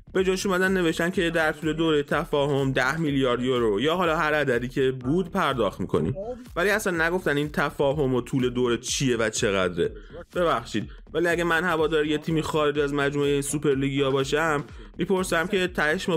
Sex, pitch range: male, 135-170 Hz